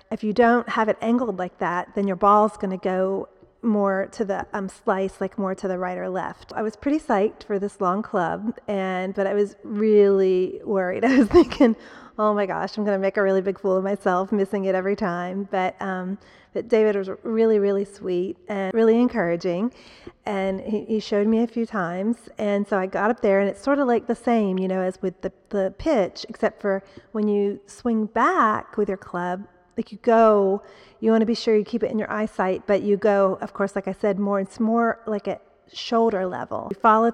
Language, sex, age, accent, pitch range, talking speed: English, female, 30-49, American, 195-230 Hz, 225 wpm